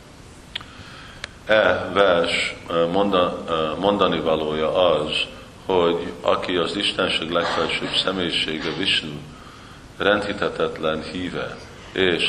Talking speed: 75 wpm